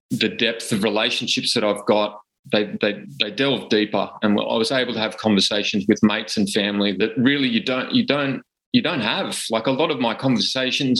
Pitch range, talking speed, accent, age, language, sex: 110-140 Hz, 205 wpm, Australian, 20-39, English, male